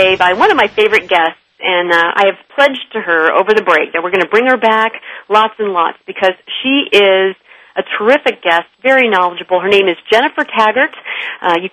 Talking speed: 210 wpm